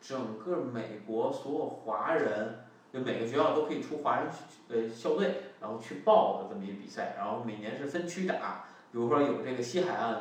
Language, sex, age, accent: Chinese, male, 20-39, native